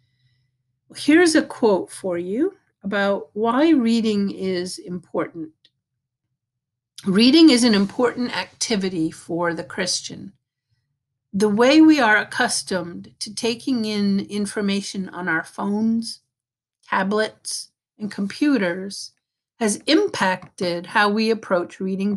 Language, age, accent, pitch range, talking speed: English, 50-69, American, 170-225 Hz, 105 wpm